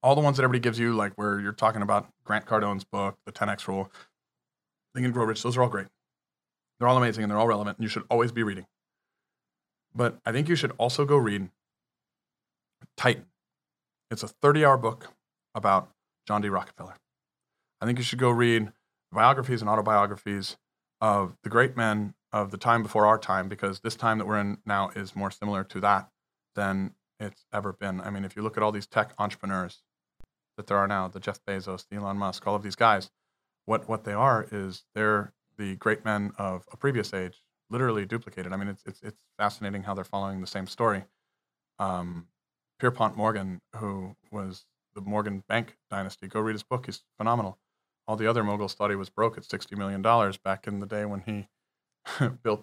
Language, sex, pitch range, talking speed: English, male, 100-115 Hz, 200 wpm